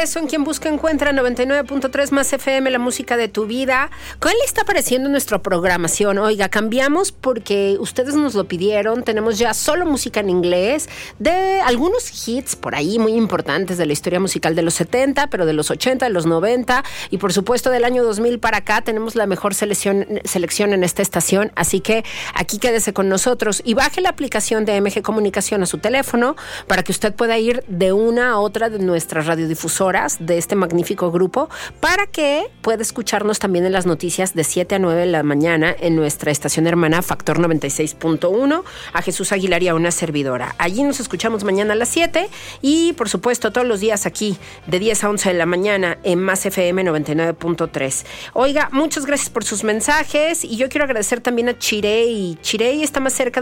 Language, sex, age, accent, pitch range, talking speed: Spanish, female, 40-59, Mexican, 180-250 Hz, 190 wpm